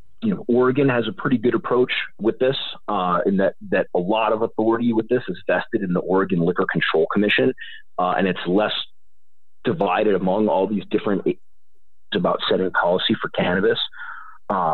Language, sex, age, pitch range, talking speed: English, male, 30-49, 100-135 Hz, 175 wpm